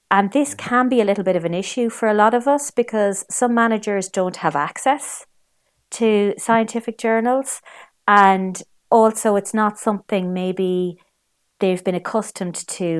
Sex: female